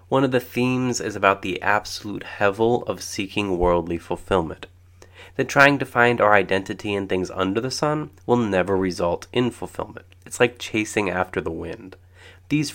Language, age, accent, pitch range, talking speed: English, 30-49, American, 90-115 Hz, 170 wpm